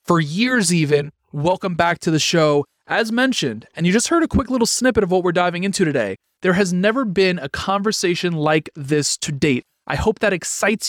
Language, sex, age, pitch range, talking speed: English, male, 30-49, 175-220 Hz, 210 wpm